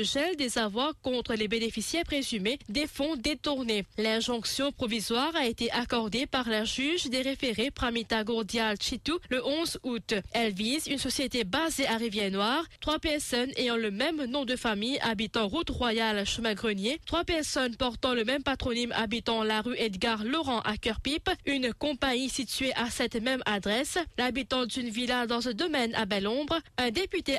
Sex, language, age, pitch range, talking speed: female, English, 20-39, 230-280 Hz, 165 wpm